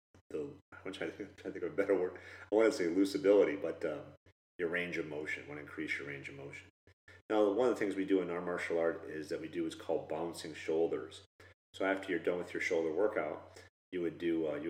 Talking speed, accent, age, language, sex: 255 wpm, American, 40-59, English, male